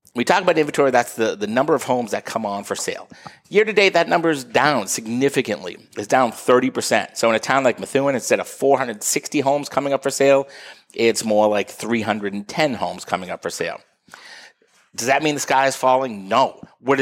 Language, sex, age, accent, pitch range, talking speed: English, male, 30-49, American, 110-140 Hz, 200 wpm